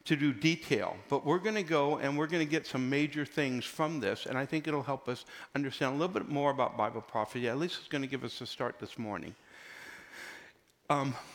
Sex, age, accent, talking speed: male, 60-79, American, 235 wpm